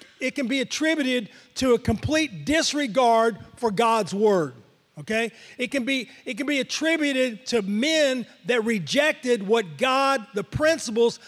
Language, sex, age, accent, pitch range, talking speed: English, male, 40-59, American, 220-260 Hz, 135 wpm